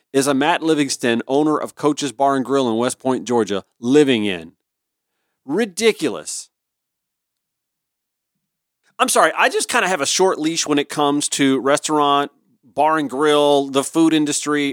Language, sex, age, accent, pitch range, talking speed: English, male, 40-59, American, 135-180 Hz, 155 wpm